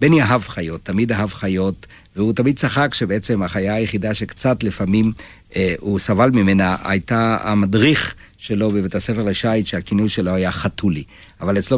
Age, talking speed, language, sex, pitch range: 60-79, 155 wpm, Hebrew, male, 95-120 Hz